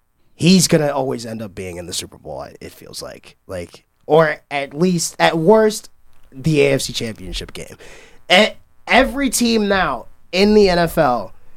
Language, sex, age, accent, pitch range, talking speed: English, male, 20-39, American, 115-155 Hz, 160 wpm